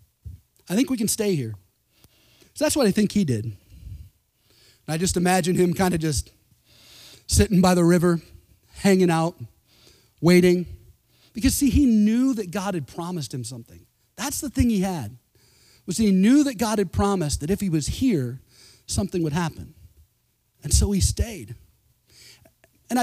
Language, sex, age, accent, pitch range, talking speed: English, male, 30-49, American, 145-200 Hz, 160 wpm